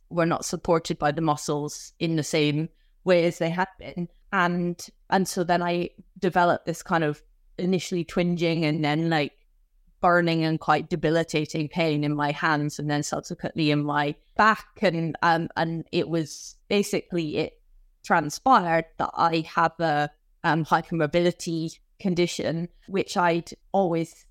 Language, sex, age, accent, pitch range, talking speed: English, female, 20-39, British, 155-175 Hz, 150 wpm